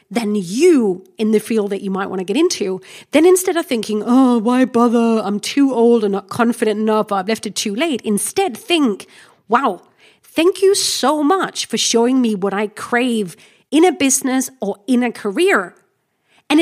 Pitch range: 215-335 Hz